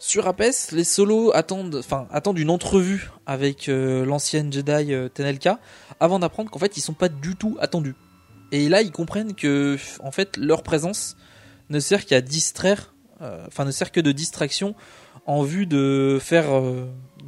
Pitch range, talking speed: 135-175 Hz, 175 wpm